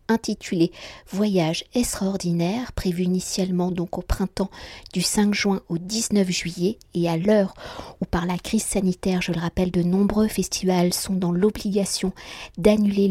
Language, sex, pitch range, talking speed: French, female, 180-210 Hz, 145 wpm